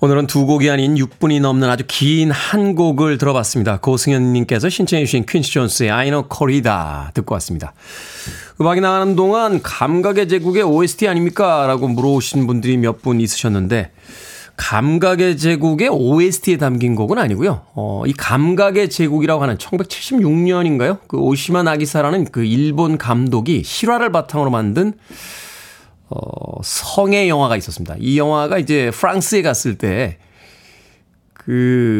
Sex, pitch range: male, 120-180 Hz